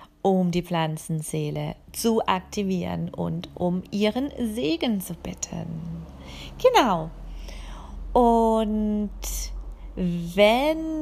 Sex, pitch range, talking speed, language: female, 165-230 Hz, 75 wpm, German